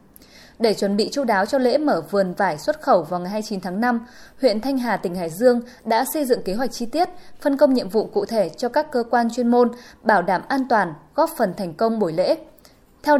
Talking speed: 240 wpm